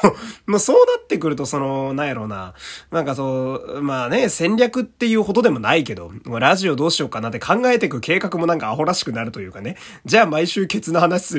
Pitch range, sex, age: 120-170 Hz, male, 20-39